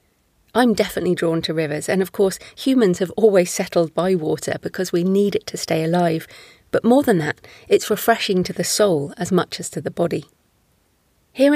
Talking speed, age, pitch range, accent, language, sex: 190 wpm, 30-49, 165-210 Hz, British, English, female